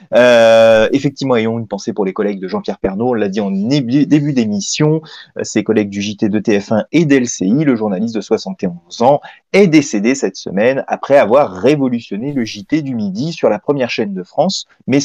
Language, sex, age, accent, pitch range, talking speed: French, male, 30-49, French, 115-175 Hz, 195 wpm